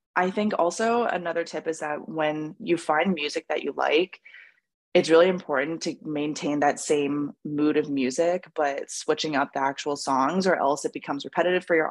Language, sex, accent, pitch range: English, female, American, 145-185 Hz